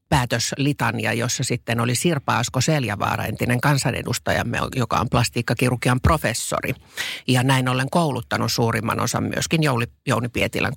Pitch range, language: 115-140 Hz, Finnish